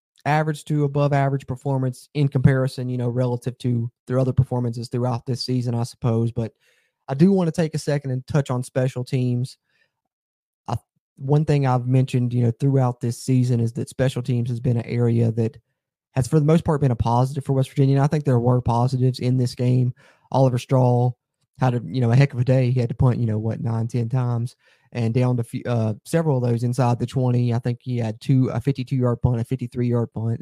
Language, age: English, 20-39